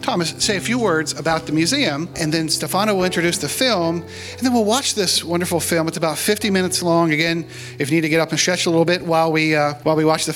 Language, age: English, 40-59